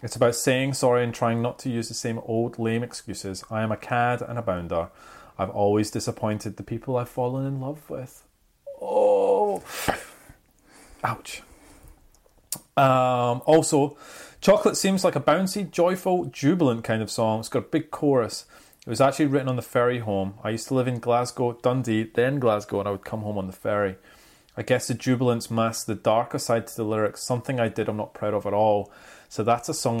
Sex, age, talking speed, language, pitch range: male, 30-49, 200 wpm, English, 110-130 Hz